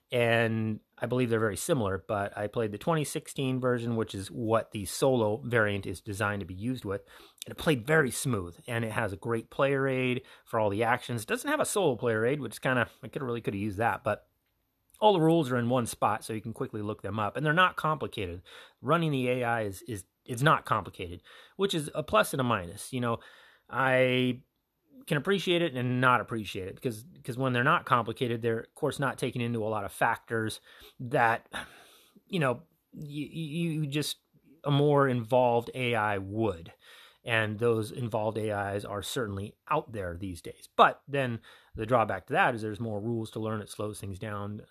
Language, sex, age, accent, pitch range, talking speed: English, male, 30-49, American, 105-135 Hz, 210 wpm